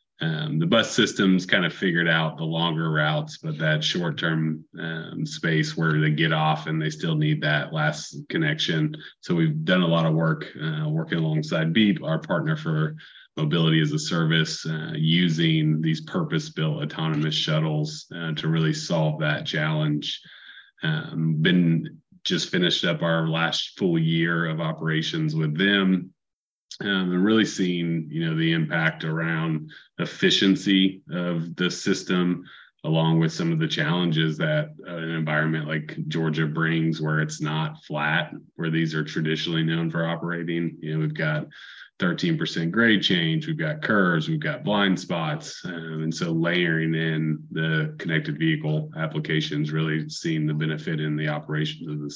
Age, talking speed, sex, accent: 30-49, 165 wpm, male, American